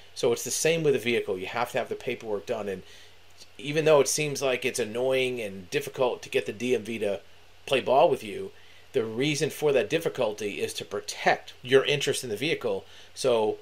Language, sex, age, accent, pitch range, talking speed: English, male, 30-49, American, 110-160 Hz, 205 wpm